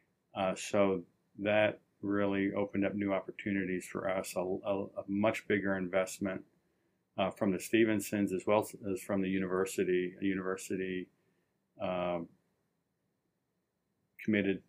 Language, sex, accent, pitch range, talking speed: English, male, American, 95-100 Hz, 120 wpm